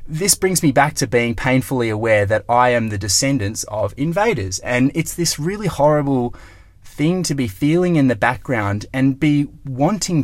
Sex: male